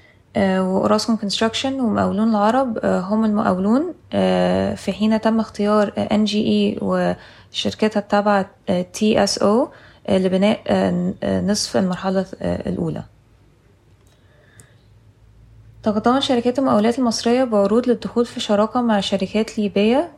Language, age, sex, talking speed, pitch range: Arabic, 20-39, female, 90 wpm, 190-225 Hz